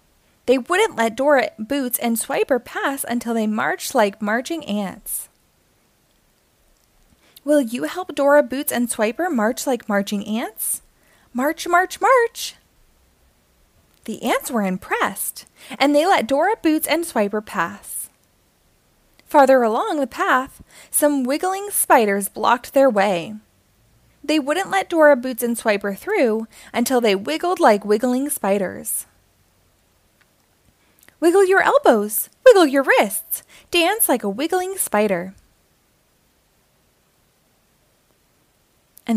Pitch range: 220-315 Hz